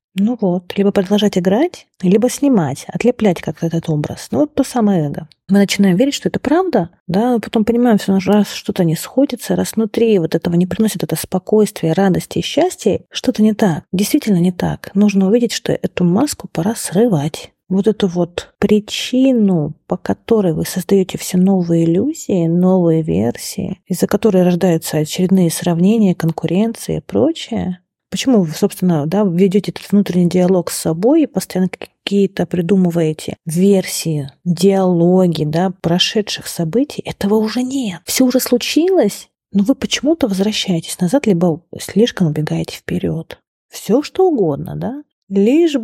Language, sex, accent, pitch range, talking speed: Russian, female, native, 175-220 Hz, 150 wpm